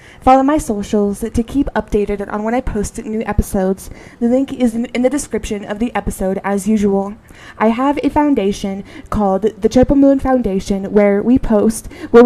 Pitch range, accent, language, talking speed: 205-260 Hz, American, English, 180 wpm